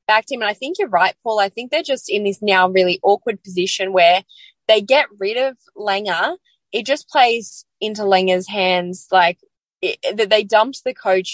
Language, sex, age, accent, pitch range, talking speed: English, female, 20-39, Australian, 195-255 Hz, 195 wpm